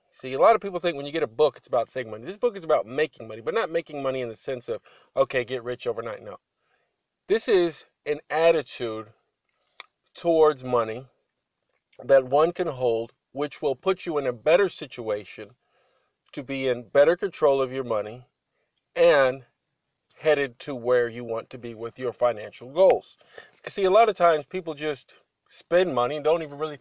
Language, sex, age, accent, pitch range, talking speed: English, male, 50-69, American, 125-175 Hz, 190 wpm